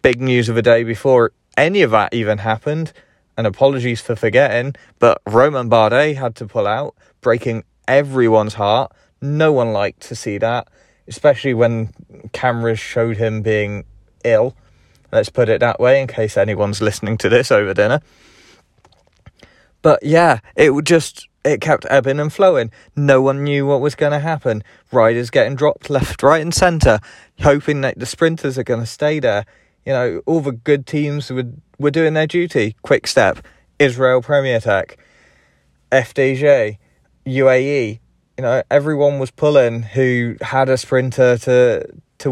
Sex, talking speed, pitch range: male, 160 wpm, 115-145 Hz